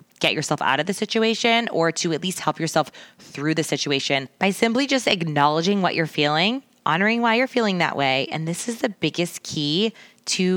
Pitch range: 145-190 Hz